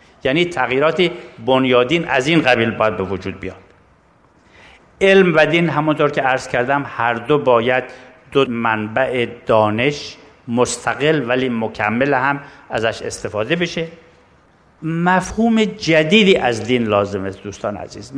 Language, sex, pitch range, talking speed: Persian, male, 125-165 Hz, 125 wpm